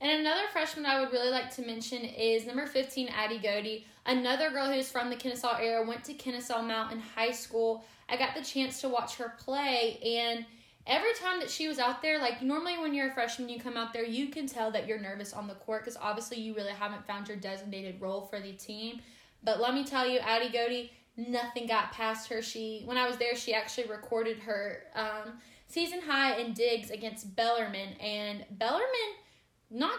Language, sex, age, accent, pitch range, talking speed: English, female, 10-29, American, 215-255 Hz, 210 wpm